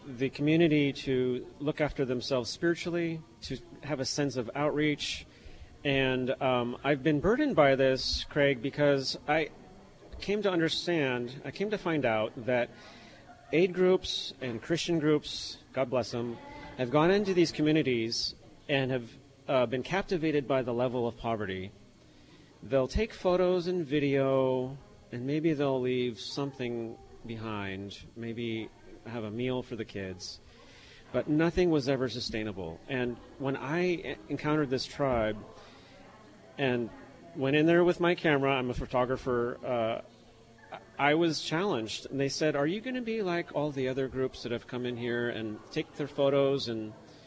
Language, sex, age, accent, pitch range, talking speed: English, male, 30-49, American, 120-155 Hz, 155 wpm